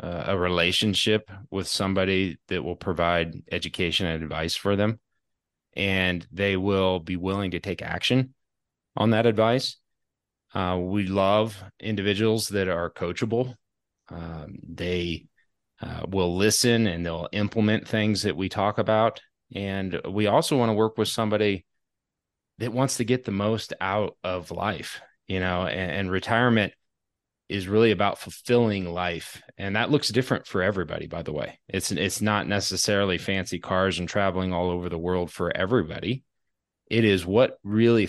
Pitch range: 90-110 Hz